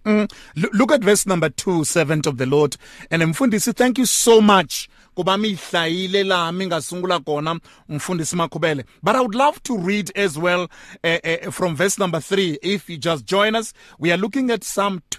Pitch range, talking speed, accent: 165-225 Hz, 155 wpm, Nigerian